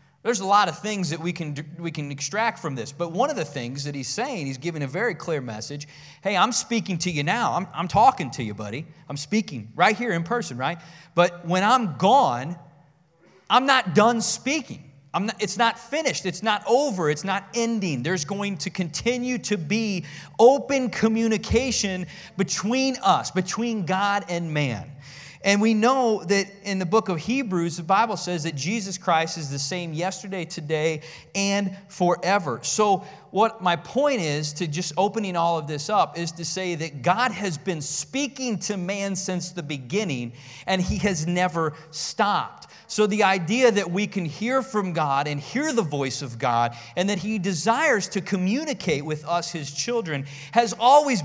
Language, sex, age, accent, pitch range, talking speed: English, male, 30-49, American, 155-215 Hz, 185 wpm